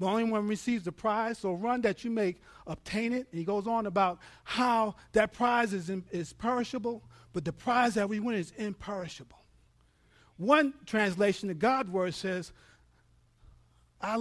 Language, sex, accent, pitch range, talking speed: English, male, American, 135-215 Hz, 165 wpm